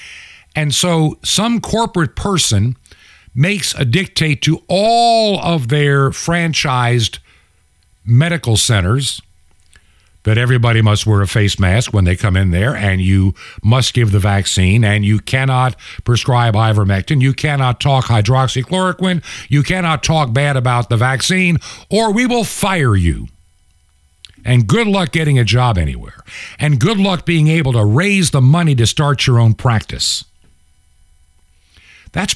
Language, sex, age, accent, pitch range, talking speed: English, male, 60-79, American, 85-140 Hz, 140 wpm